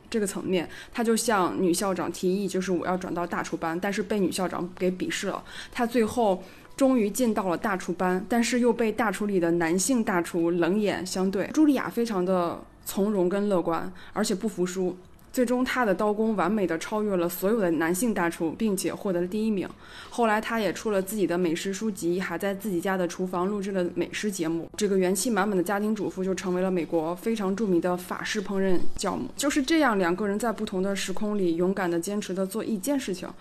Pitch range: 180-225 Hz